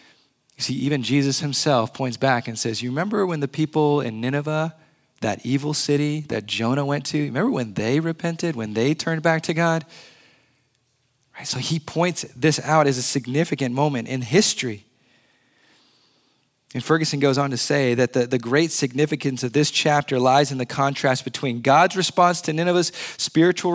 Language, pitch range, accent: English, 125-155 Hz, American